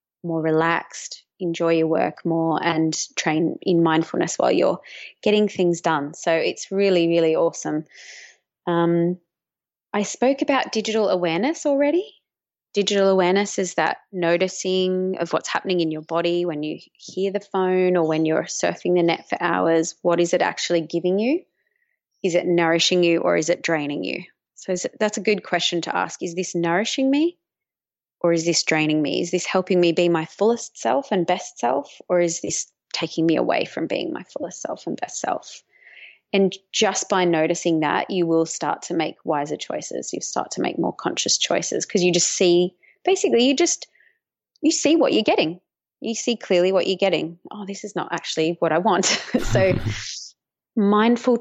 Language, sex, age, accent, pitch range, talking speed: English, female, 20-39, Australian, 165-205 Hz, 180 wpm